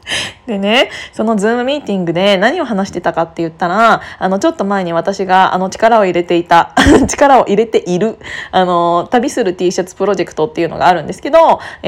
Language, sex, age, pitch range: Japanese, female, 20-39, 190-245 Hz